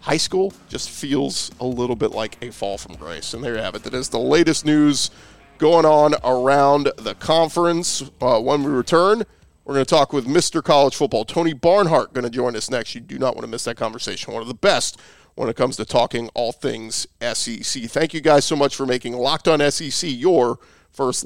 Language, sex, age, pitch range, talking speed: English, male, 40-59, 130-155 Hz, 215 wpm